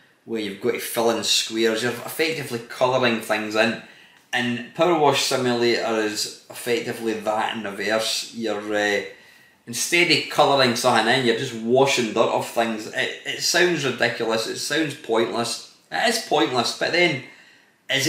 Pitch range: 110-135 Hz